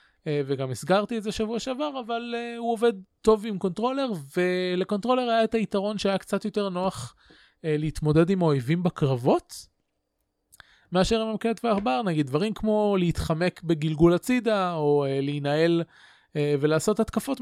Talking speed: 150 wpm